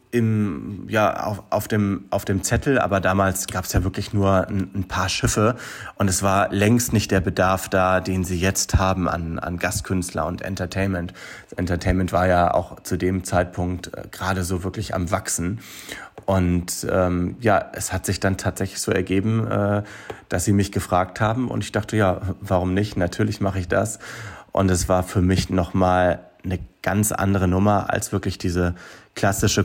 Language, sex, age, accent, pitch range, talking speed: German, male, 30-49, German, 90-100 Hz, 185 wpm